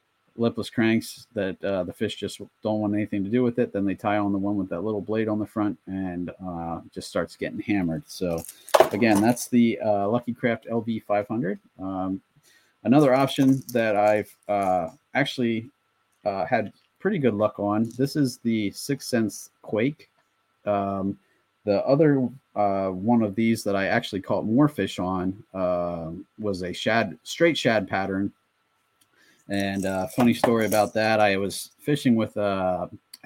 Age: 30-49